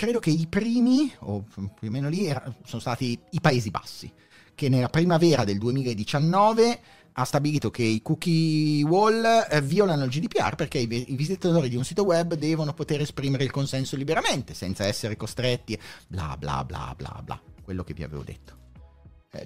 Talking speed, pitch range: 175 wpm, 105-155 Hz